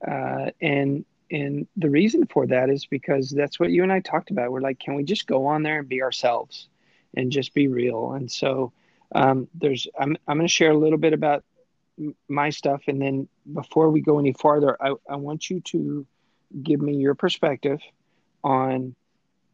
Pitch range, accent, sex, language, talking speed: 135-155 Hz, American, male, English, 195 wpm